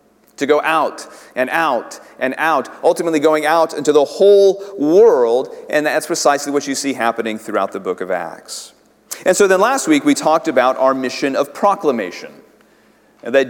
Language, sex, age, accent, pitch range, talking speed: English, male, 40-59, American, 135-190 Hz, 175 wpm